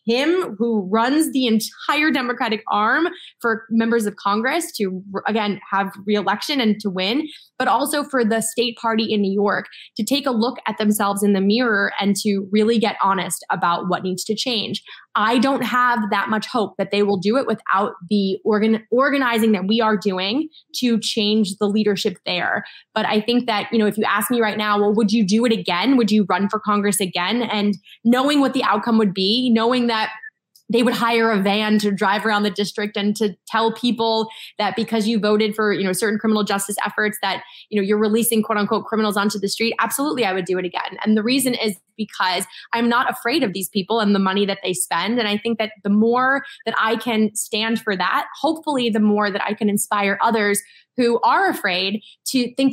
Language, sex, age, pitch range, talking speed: English, female, 20-39, 205-245 Hz, 210 wpm